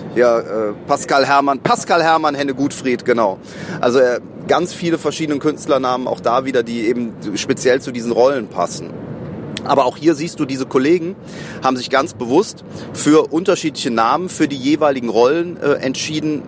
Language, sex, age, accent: German, male, 30-49, German